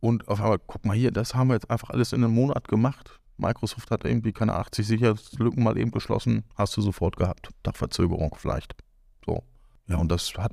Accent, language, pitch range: German, German, 105-130 Hz